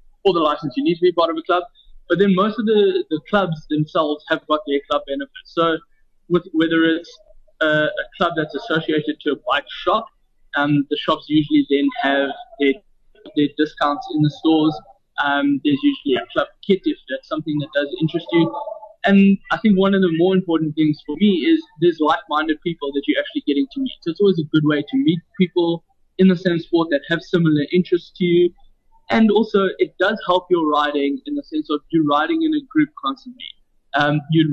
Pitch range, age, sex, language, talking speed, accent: 150-205 Hz, 20-39, male, English, 210 wpm, South African